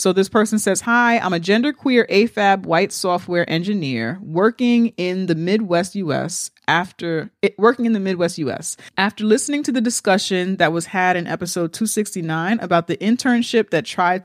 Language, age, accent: English, 30-49, American